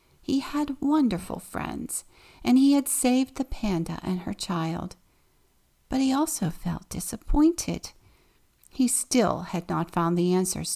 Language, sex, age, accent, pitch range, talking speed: English, female, 50-69, American, 175-240 Hz, 140 wpm